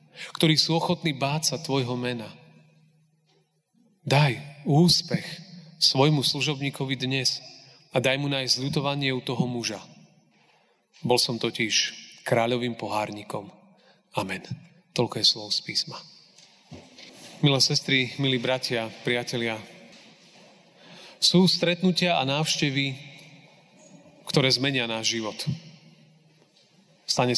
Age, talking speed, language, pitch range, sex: 30-49, 95 wpm, Slovak, 125-160 Hz, male